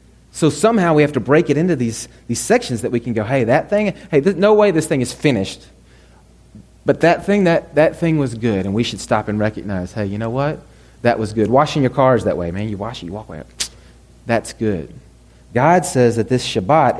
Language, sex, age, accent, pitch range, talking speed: English, male, 30-49, American, 100-150 Hz, 230 wpm